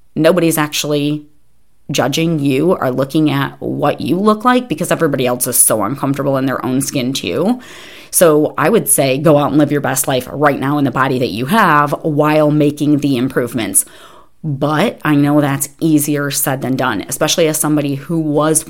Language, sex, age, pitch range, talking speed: English, female, 30-49, 140-160 Hz, 185 wpm